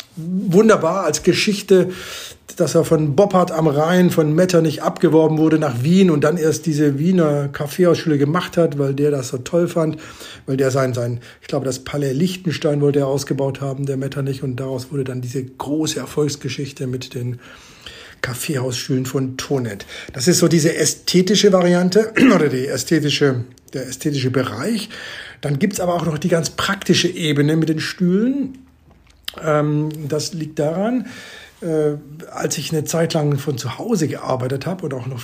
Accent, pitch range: German, 140-175 Hz